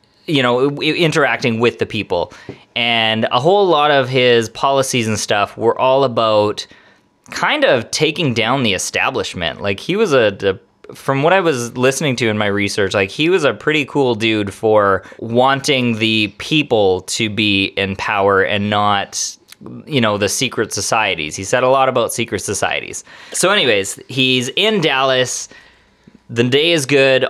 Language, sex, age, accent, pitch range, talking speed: English, male, 20-39, American, 105-130 Hz, 165 wpm